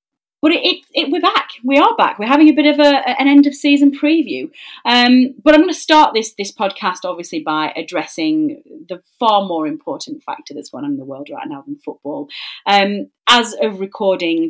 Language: English